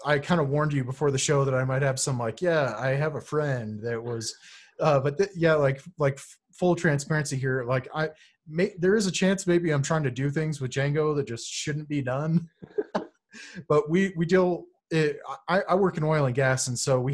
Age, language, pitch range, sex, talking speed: 30-49, English, 130-160 Hz, male, 230 wpm